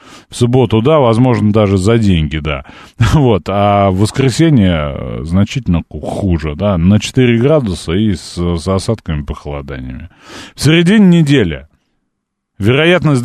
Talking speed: 120 wpm